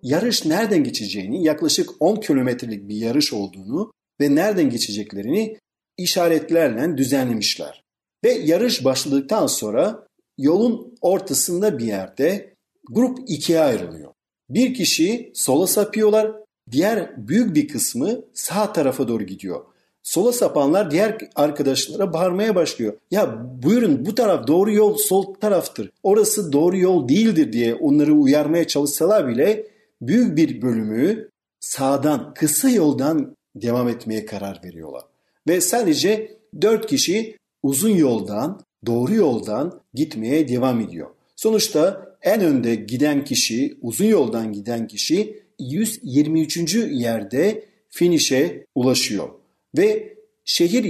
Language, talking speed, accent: Turkish, 115 wpm, native